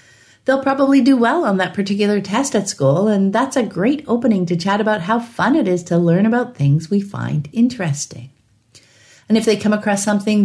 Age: 50-69